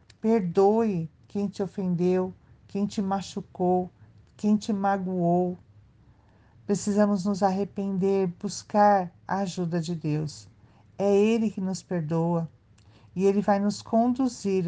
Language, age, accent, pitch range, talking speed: Portuguese, 50-69, Brazilian, 165-205 Hz, 115 wpm